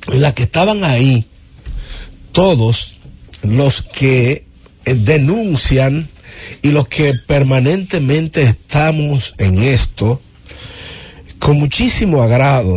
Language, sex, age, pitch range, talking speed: English, male, 60-79, 105-145 Hz, 90 wpm